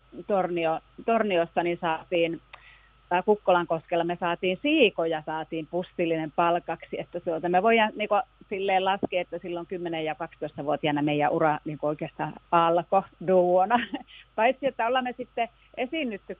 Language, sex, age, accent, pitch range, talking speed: Finnish, female, 30-49, native, 155-195 Hz, 130 wpm